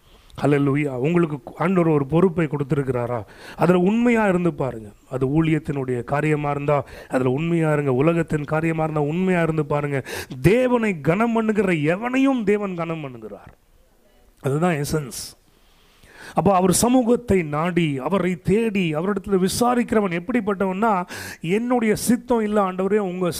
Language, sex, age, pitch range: English, male, 30-49, 155-220 Hz